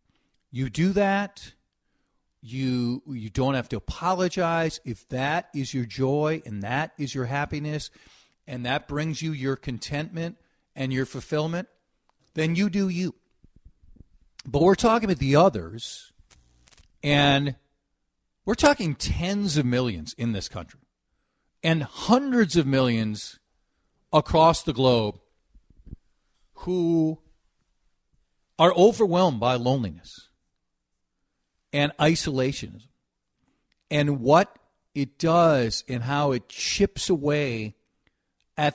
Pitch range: 120-170 Hz